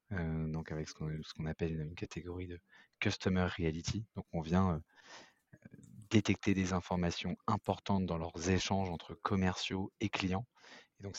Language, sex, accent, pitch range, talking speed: French, male, French, 85-95 Hz, 150 wpm